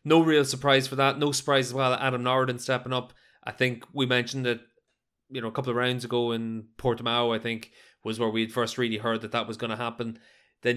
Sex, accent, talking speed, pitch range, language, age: male, Irish, 235 wpm, 115-130 Hz, English, 20-39